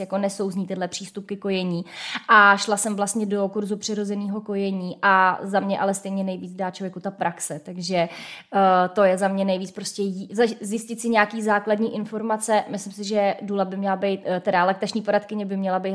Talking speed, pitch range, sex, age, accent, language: 190 wpm, 190-210 Hz, female, 20-39, native, Czech